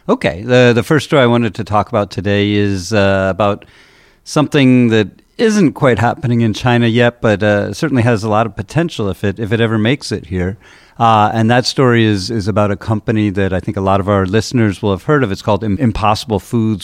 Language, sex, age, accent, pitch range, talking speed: English, male, 40-59, American, 100-120 Hz, 230 wpm